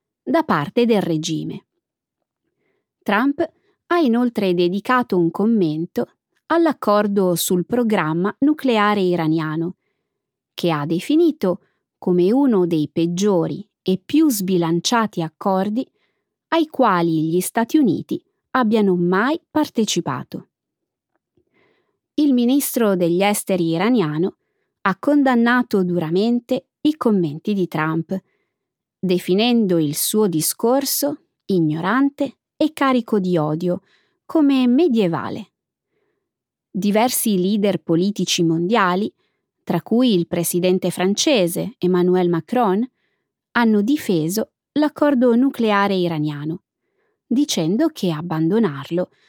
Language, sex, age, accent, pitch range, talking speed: Italian, female, 20-39, native, 175-255 Hz, 95 wpm